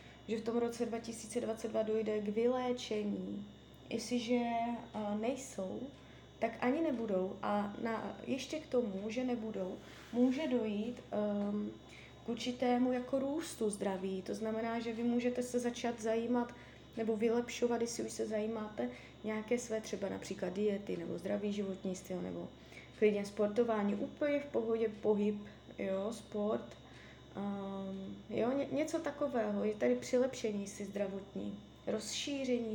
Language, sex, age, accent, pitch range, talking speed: Czech, female, 20-39, native, 205-245 Hz, 125 wpm